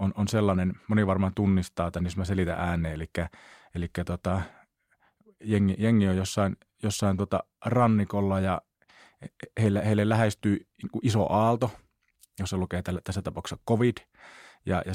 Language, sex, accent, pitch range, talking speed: Finnish, male, native, 90-105 Hz, 130 wpm